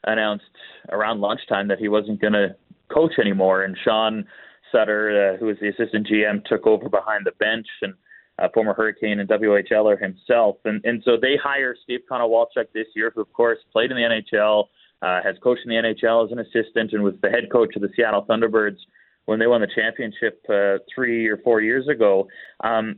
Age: 30-49